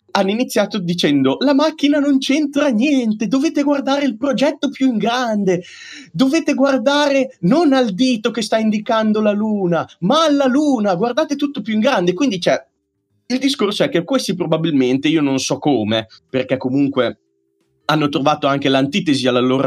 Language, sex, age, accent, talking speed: Italian, male, 30-49, native, 160 wpm